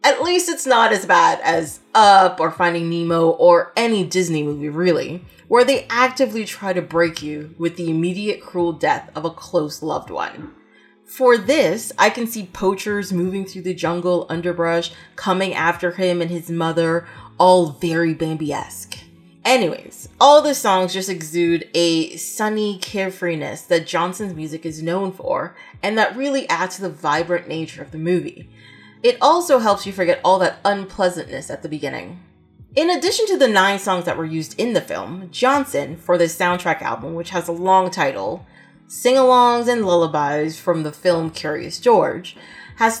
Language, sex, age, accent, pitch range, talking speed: English, female, 30-49, American, 165-210 Hz, 170 wpm